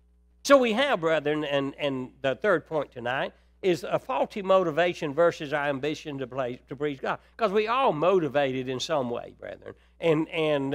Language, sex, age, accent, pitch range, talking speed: English, male, 60-79, American, 145-185 Hz, 180 wpm